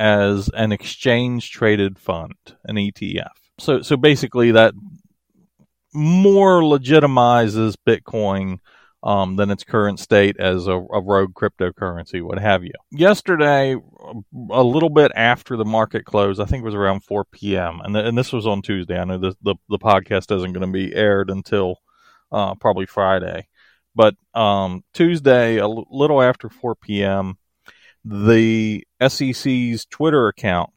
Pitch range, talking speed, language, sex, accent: 100-125 Hz, 150 wpm, English, male, American